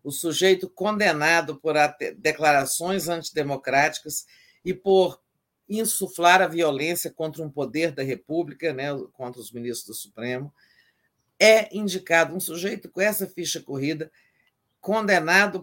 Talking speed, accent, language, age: 120 wpm, Brazilian, Portuguese, 50-69